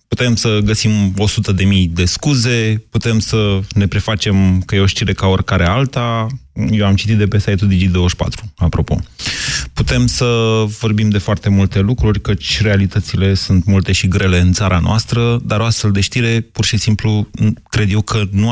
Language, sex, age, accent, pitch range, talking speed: Romanian, male, 30-49, native, 95-115 Hz, 175 wpm